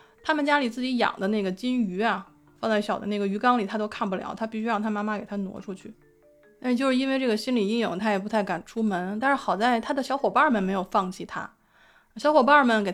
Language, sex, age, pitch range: Chinese, female, 20-39, 195-265 Hz